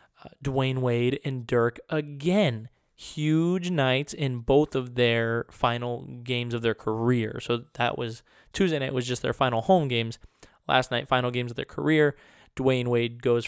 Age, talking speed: 20-39, 165 wpm